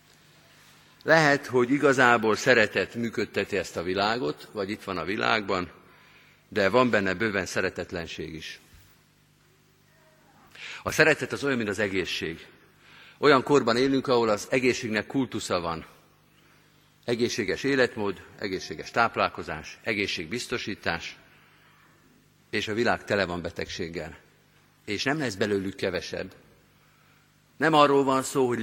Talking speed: 115 wpm